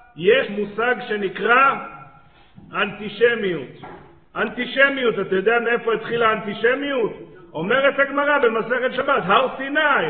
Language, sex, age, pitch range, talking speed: Hebrew, male, 50-69, 215-255 Hz, 95 wpm